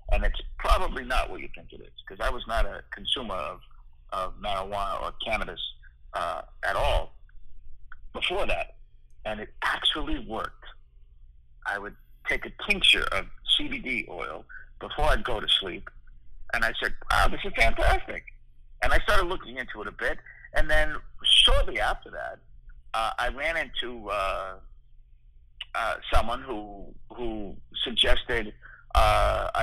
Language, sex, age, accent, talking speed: English, male, 60-79, American, 150 wpm